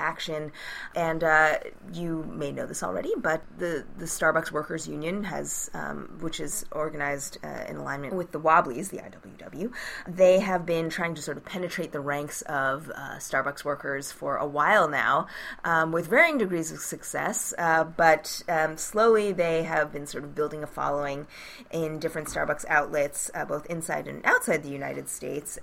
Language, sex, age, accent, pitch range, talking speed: English, female, 20-39, American, 150-175 Hz, 175 wpm